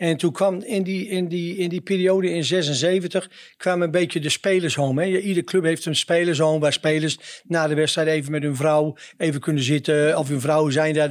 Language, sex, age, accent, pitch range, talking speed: Dutch, male, 60-79, Dutch, 155-180 Hz, 210 wpm